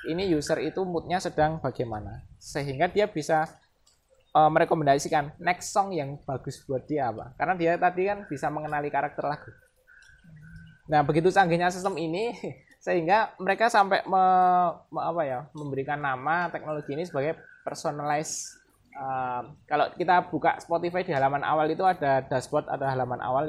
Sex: male